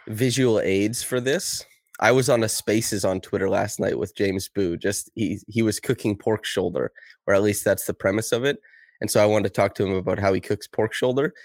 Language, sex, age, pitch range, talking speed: English, male, 20-39, 95-115 Hz, 235 wpm